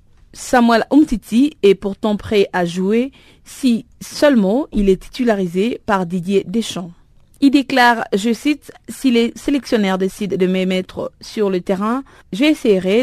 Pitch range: 190-245 Hz